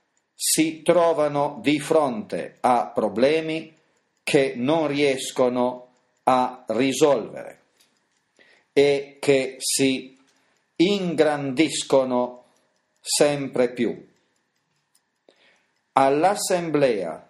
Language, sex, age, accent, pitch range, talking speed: Italian, male, 40-59, native, 135-160 Hz, 60 wpm